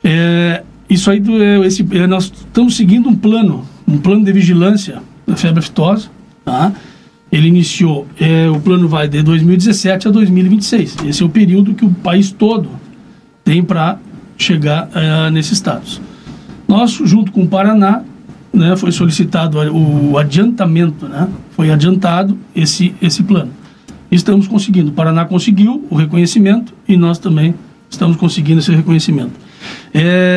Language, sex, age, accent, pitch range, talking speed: Portuguese, male, 60-79, Brazilian, 170-210 Hz, 145 wpm